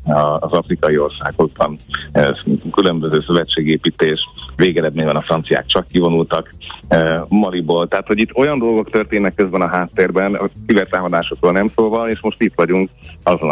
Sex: male